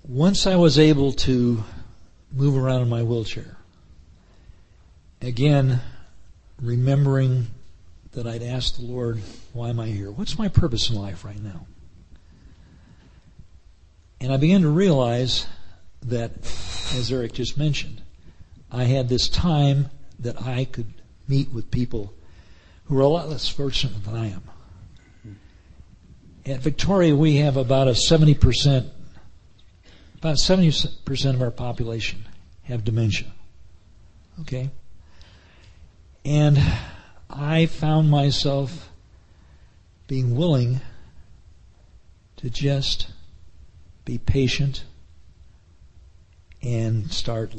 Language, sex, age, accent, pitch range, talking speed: English, male, 50-69, American, 90-135 Hz, 105 wpm